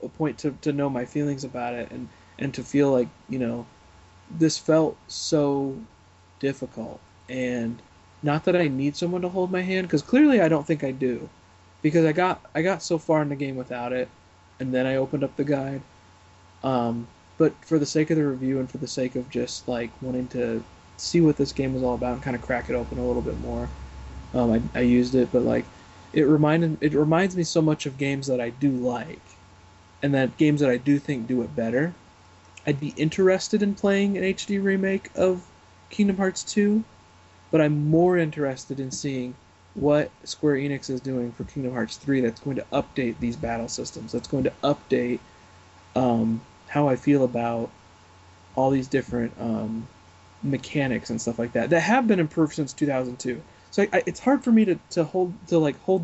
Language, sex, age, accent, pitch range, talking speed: English, male, 20-39, American, 115-155 Hz, 205 wpm